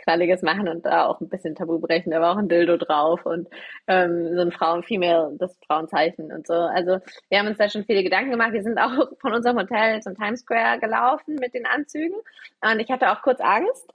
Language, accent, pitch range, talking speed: German, German, 185-255 Hz, 225 wpm